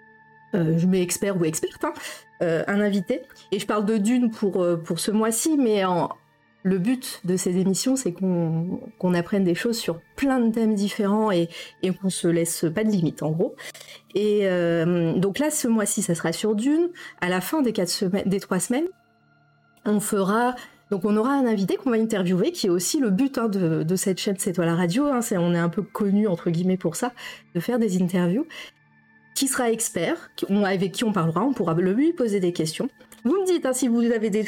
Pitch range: 175-235 Hz